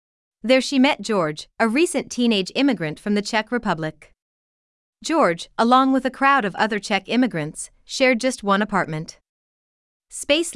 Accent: American